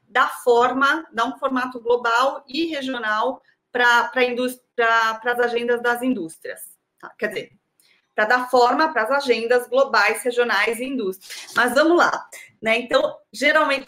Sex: female